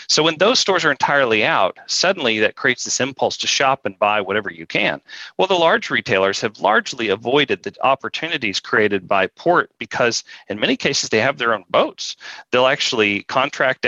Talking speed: 185 wpm